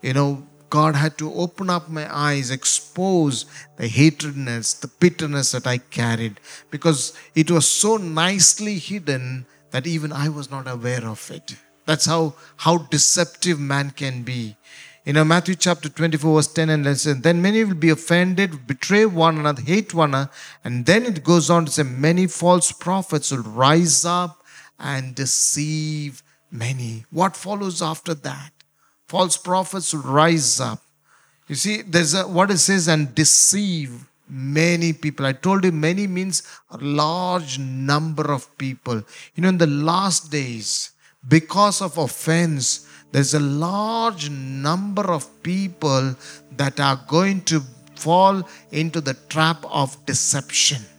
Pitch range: 140-175 Hz